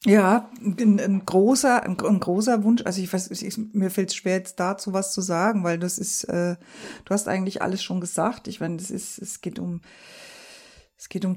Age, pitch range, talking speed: 50-69, 190-215 Hz, 205 wpm